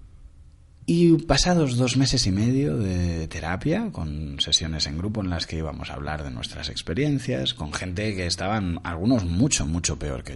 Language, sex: Spanish, male